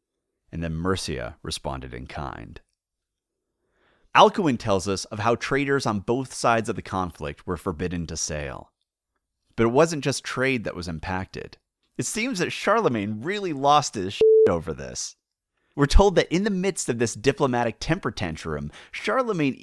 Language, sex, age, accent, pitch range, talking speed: English, male, 30-49, American, 90-145 Hz, 160 wpm